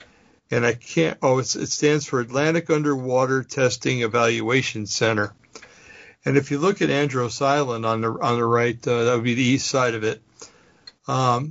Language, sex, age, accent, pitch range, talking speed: English, male, 60-79, American, 115-140 Hz, 190 wpm